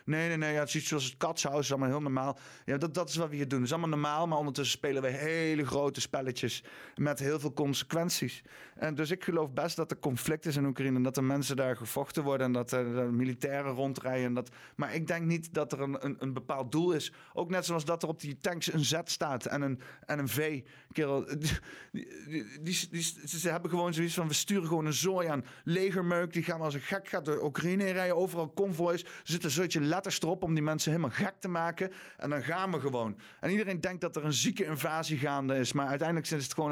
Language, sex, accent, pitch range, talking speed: Dutch, male, Dutch, 125-165 Hz, 245 wpm